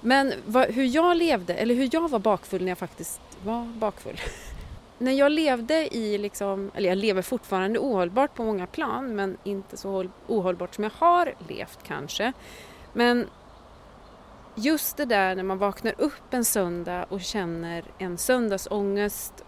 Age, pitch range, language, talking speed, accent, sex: 30-49, 185-255 Hz, Swedish, 155 wpm, native, female